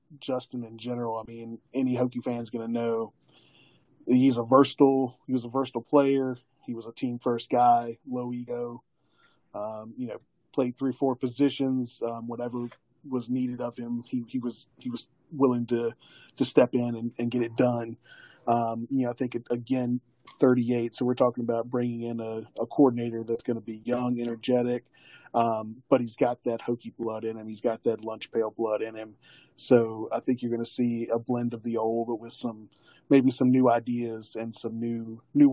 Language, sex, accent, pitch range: English, male, American, 115-125 Hz